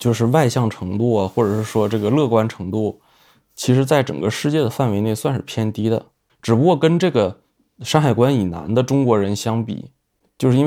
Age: 20-39